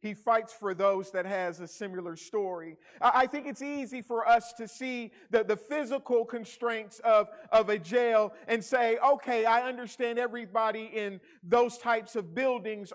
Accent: American